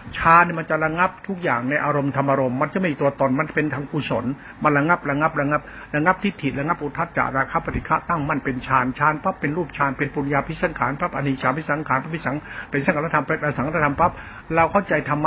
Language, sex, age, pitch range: Thai, male, 60-79, 145-185 Hz